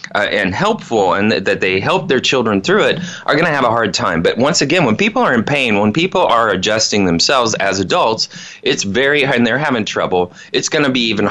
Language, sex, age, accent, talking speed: English, male, 30-49, American, 240 wpm